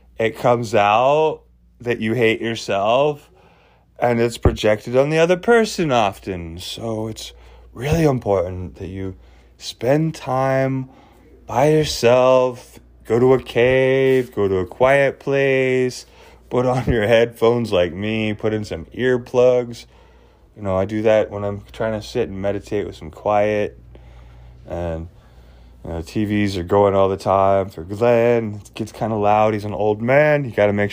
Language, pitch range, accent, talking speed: English, 90-125 Hz, American, 160 wpm